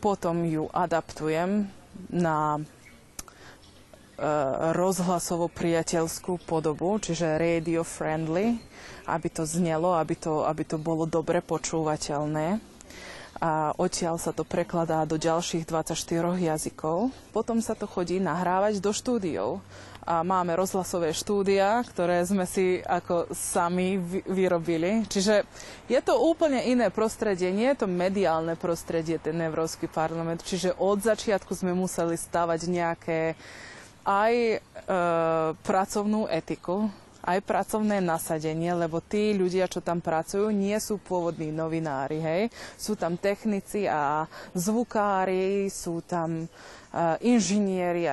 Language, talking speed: Slovak, 110 wpm